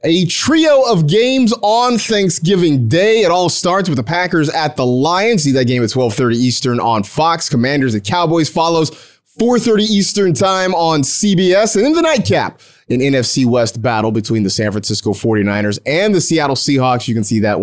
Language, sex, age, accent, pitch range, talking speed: English, male, 30-49, American, 125-175 Hz, 185 wpm